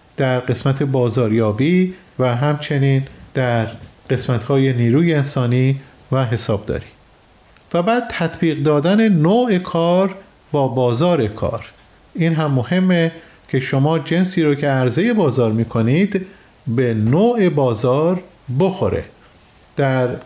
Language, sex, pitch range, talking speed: Persian, male, 130-170 Hz, 105 wpm